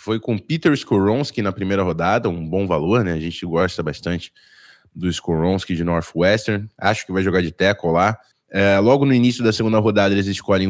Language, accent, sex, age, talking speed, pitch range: Portuguese, Brazilian, male, 20-39, 195 wpm, 95-120 Hz